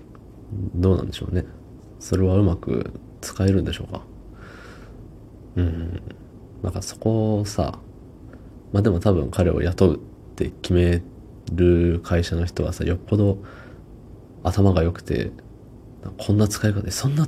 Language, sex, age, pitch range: Japanese, male, 20-39, 90-110 Hz